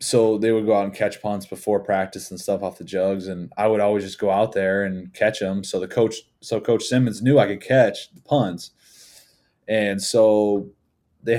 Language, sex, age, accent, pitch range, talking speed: English, male, 20-39, American, 95-110 Hz, 215 wpm